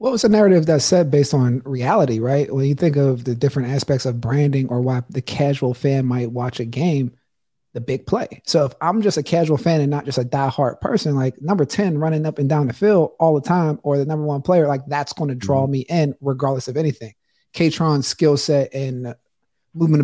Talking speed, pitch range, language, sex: 230 wpm, 135-160 Hz, English, male